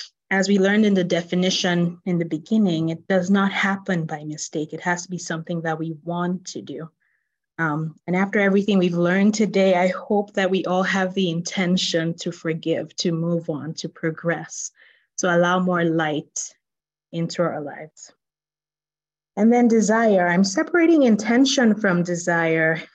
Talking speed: 160 wpm